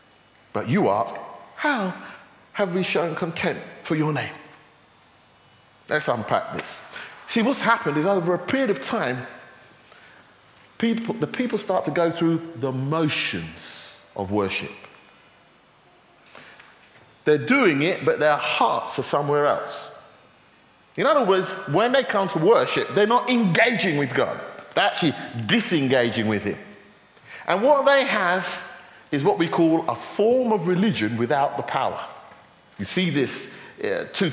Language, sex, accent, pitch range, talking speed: English, male, British, 145-210 Hz, 140 wpm